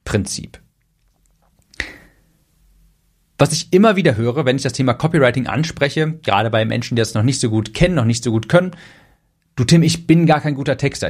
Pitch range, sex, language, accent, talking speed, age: 115-155 Hz, male, German, German, 190 wpm, 40-59